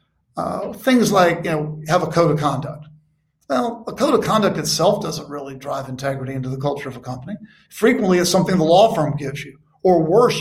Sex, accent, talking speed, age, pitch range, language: male, American, 210 wpm, 50-69, 155-200 Hz, English